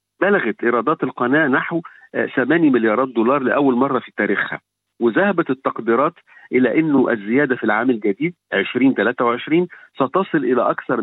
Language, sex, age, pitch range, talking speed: Arabic, male, 50-69, 115-160 Hz, 125 wpm